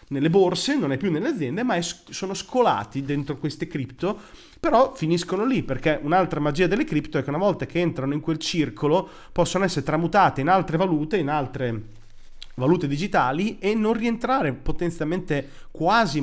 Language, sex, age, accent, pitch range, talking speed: Italian, male, 30-49, native, 130-175 Hz, 165 wpm